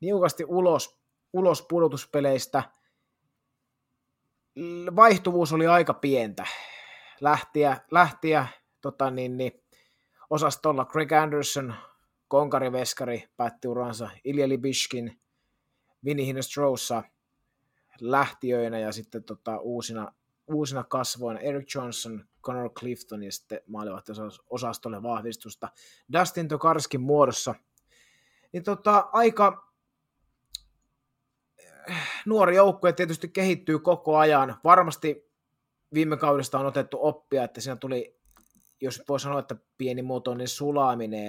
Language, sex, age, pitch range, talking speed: Finnish, male, 30-49, 120-150 Hz, 95 wpm